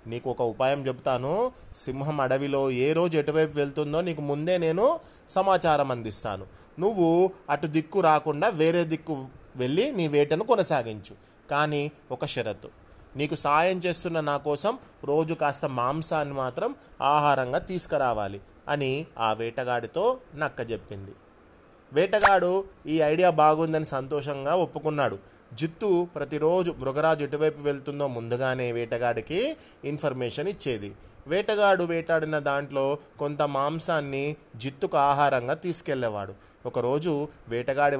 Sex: male